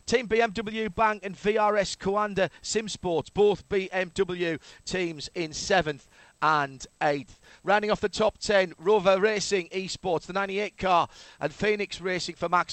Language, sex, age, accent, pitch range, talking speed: English, male, 40-59, British, 165-200 Hz, 145 wpm